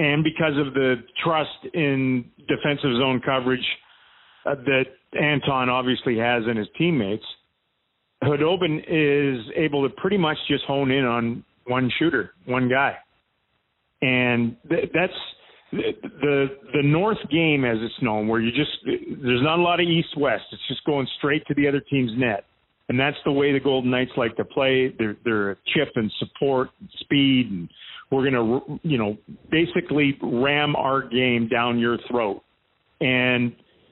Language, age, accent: English, 40-59, American